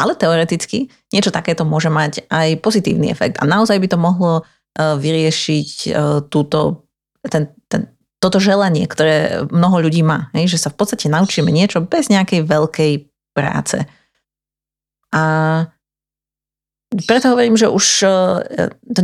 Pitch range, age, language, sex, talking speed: 145-175 Hz, 30-49, Slovak, female, 115 wpm